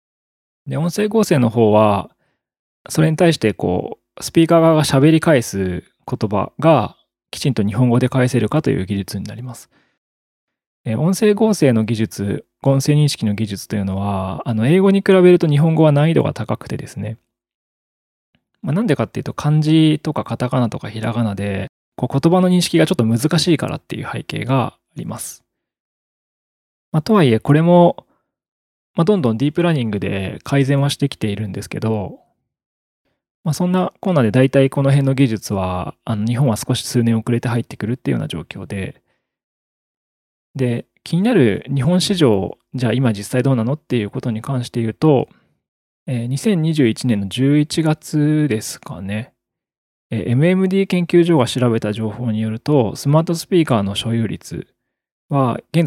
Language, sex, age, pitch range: Japanese, male, 20-39, 110-155 Hz